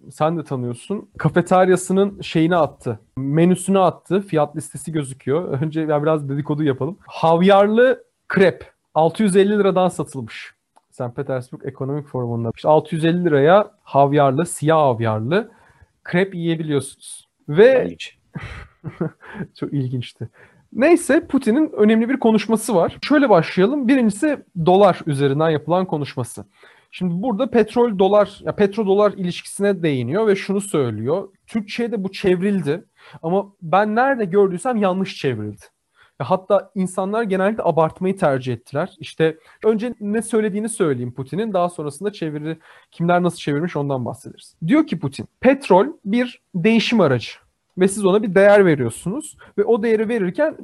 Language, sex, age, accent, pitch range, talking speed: Turkish, male, 40-59, native, 150-205 Hz, 125 wpm